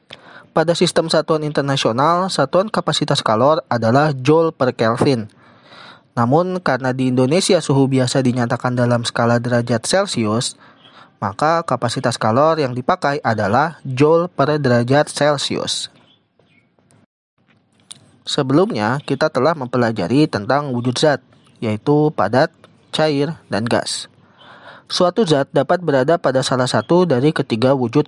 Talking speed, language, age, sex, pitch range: 115 wpm, Indonesian, 20-39, male, 125-155 Hz